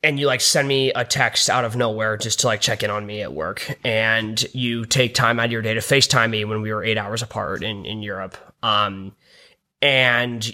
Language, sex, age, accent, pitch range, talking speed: English, male, 20-39, American, 115-140 Hz, 235 wpm